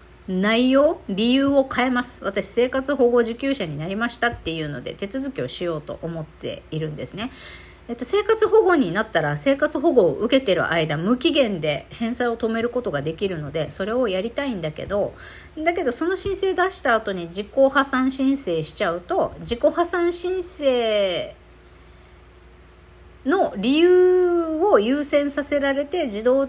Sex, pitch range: female, 180-275 Hz